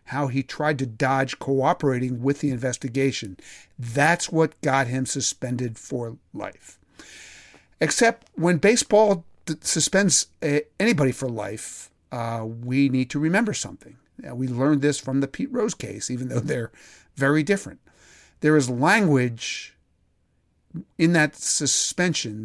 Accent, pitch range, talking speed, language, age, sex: American, 130-160 Hz, 130 wpm, English, 50-69, male